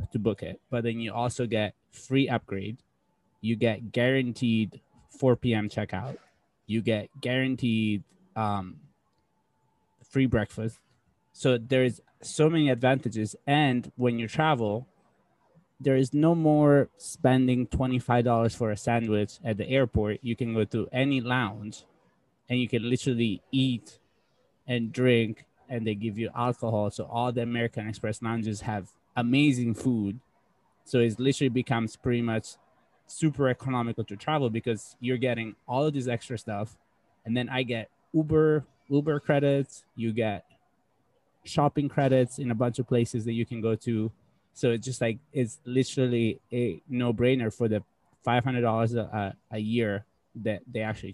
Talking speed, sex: 150 wpm, male